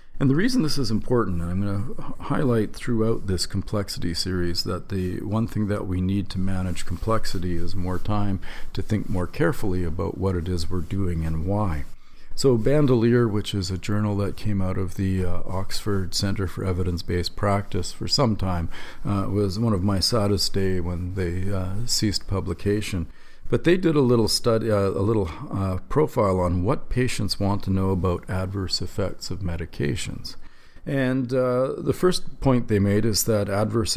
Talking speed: 180 wpm